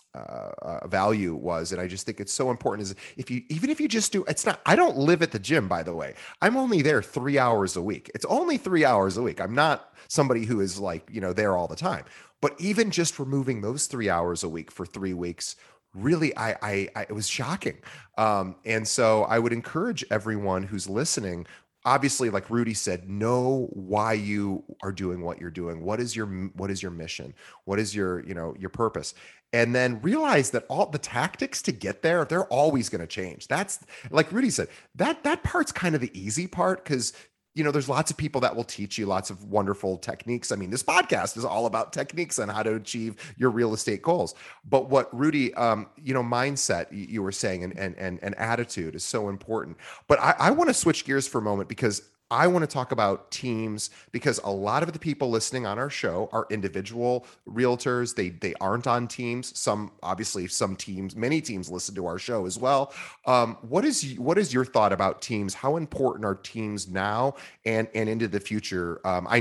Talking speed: 215 wpm